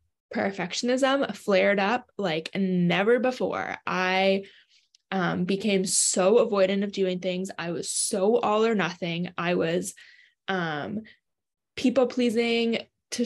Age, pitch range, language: 20-39, 185-225 Hz, English